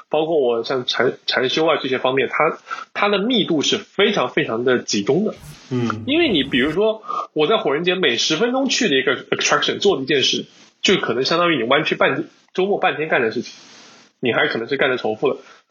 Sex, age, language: male, 20-39, Chinese